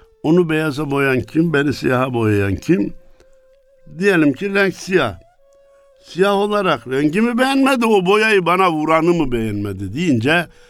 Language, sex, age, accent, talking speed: Turkish, male, 60-79, native, 130 wpm